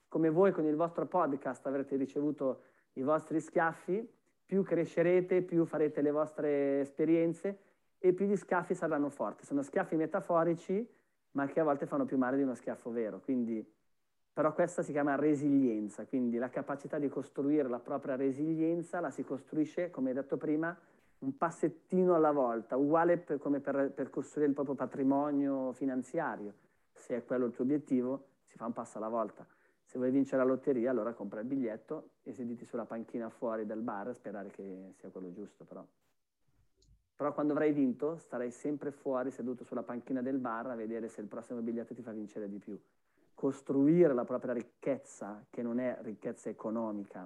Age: 30-49